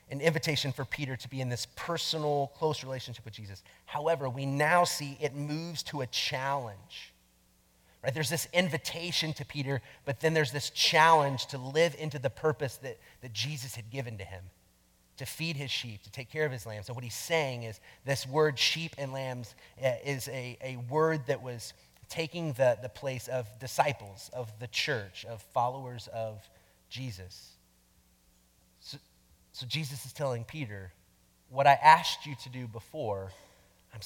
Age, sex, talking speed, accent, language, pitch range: 30-49, male, 170 wpm, American, English, 105-145 Hz